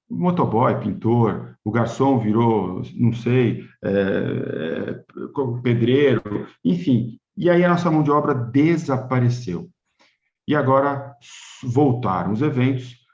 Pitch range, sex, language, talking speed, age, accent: 110-140 Hz, male, Portuguese, 105 wpm, 50-69, Brazilian